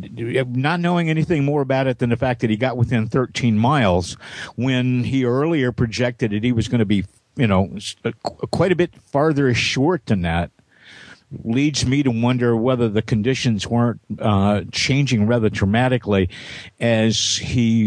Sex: male